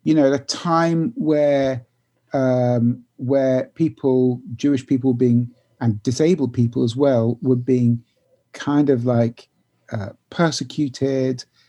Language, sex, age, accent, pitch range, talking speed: English, male, 50-69, British, 120-140 Hz, 125 wpm